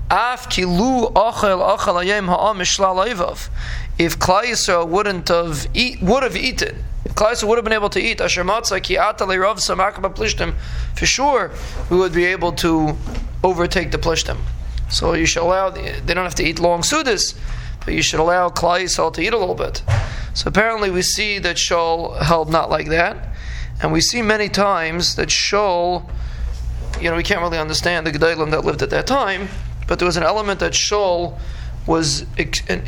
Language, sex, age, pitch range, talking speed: English, male, 20-39, 155-185 Hz, 155 wpm